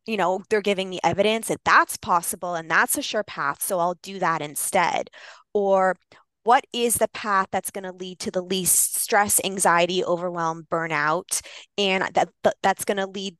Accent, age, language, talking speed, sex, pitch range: American, 20-39, English, 185 wpm, female, 185-230 Hz